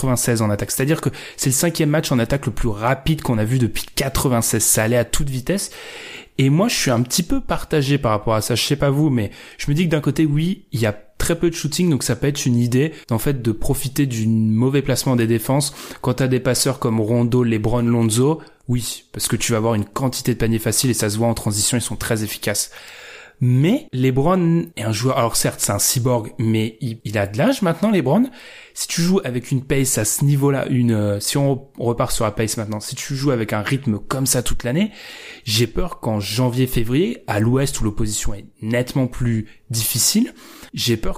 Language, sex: French, male